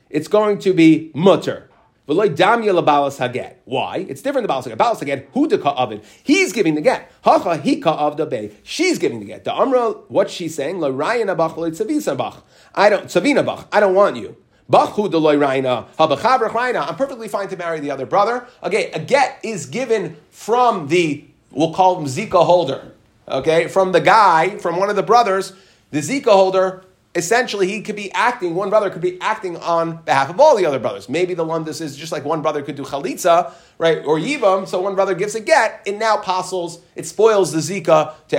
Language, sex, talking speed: English, male, 175 wpm